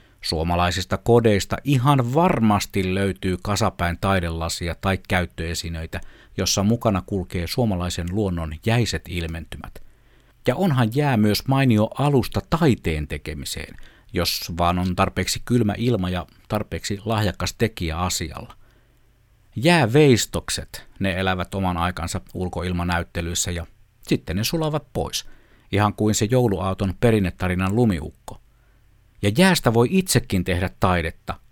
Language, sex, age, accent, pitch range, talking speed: Finnish, male, 50-69, native, 90-115 Hz, 110 wpm